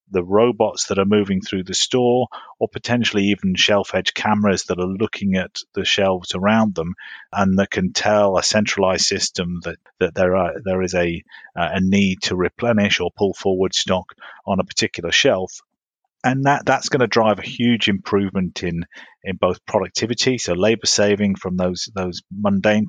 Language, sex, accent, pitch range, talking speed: English, male, British, 95-105 Hz, 180 wpm